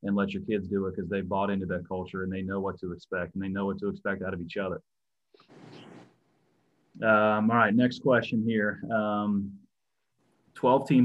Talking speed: 190 wpm